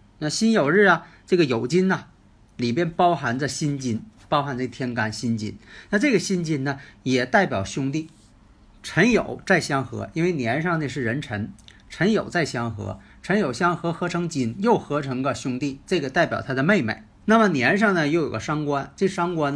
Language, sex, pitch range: Chinese, male, 110-170 Hz